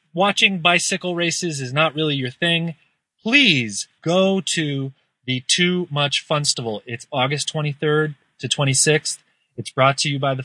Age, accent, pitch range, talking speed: 30-49, American, 145-195 Hz, 150 wpm